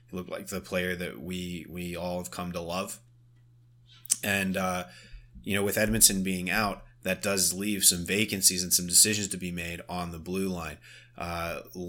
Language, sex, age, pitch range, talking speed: English, male, 20-39, 90-105 Hz, 185 wpm